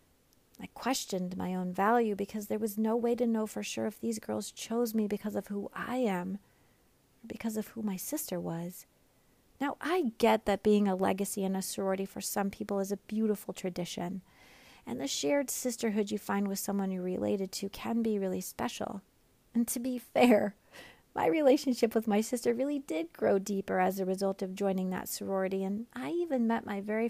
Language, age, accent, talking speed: English, 40-59, American, 195 wpm